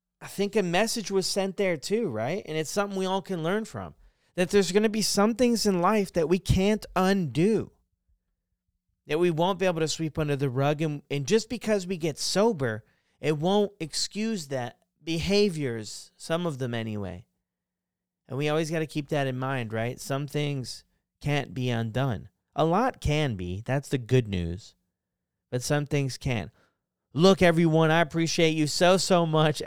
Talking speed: 185 wpm